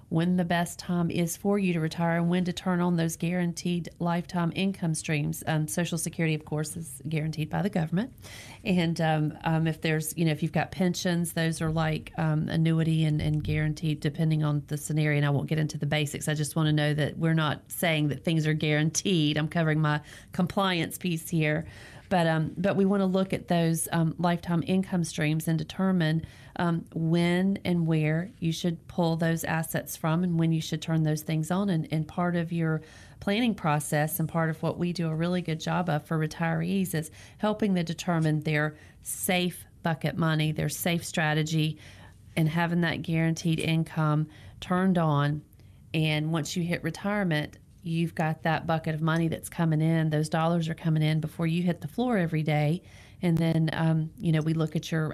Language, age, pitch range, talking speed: English, 30-49, 155-170 Hz, 200 wpm